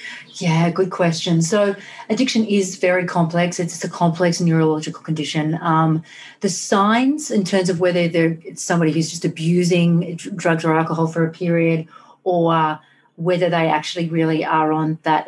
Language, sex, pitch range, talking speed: English, female, 155-175 Hz, 155 wpm